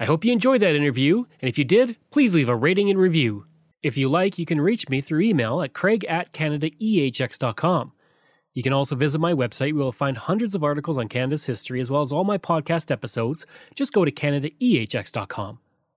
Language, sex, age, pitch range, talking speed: English, male, 30-49, 135-200 Hz, 205 wpm